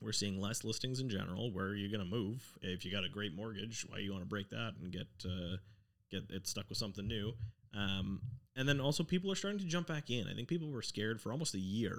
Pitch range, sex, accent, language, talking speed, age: 95-120 Hz, male, American, English, 265 wpm, 30-49